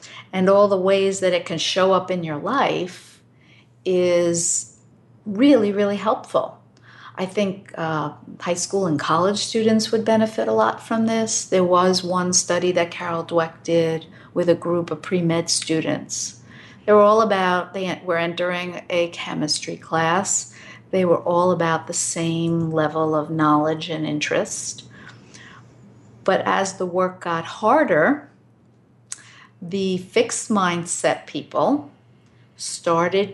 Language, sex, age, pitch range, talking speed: English, female, 50-69, 160-185 Hz, 140 wpm